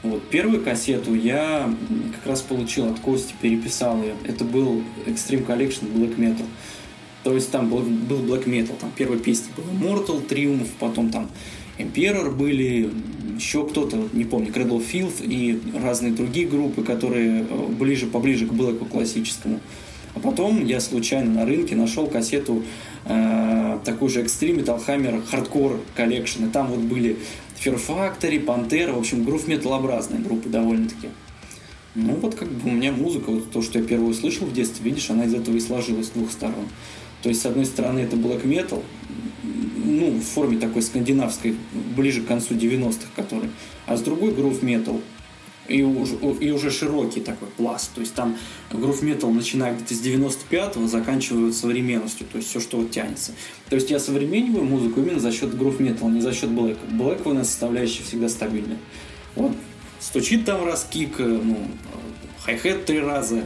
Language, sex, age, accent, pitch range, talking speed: Russian, male, 20-39, native, 115-140 Hz, 165 wpm